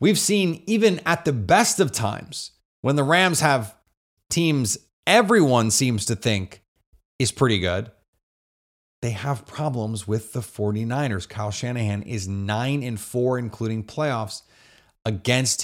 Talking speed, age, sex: 130 wpm, 30-49, male